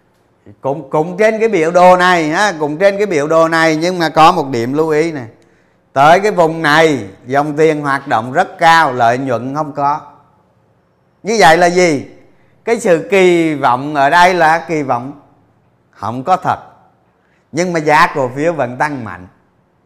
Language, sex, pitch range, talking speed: Vietnamese, male, 140-180 Hz, 175 wpm